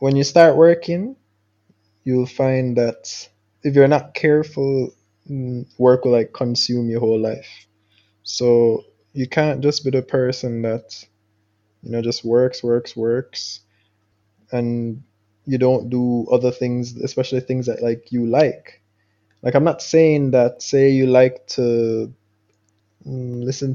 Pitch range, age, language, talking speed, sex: 110-130 Hz, 20-39, English, 135 wpm, male